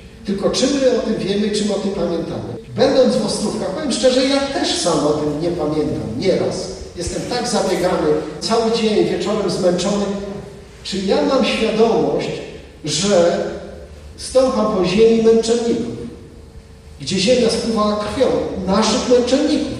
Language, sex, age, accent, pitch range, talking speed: Polish, male, 40-59, native, 155-230 Hz, 140 wpm